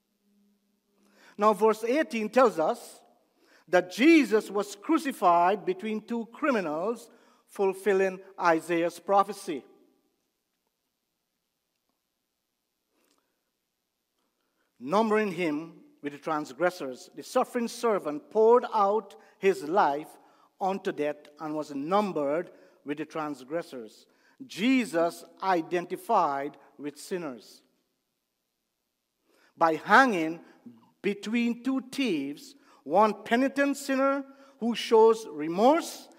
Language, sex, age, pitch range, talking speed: English, male, 50-69, 175-245 Hz, 85 wpm